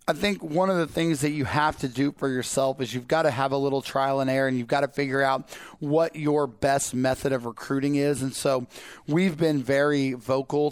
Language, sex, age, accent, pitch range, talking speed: English, male, 30-49, American, 135-150 Hz, 235 wpm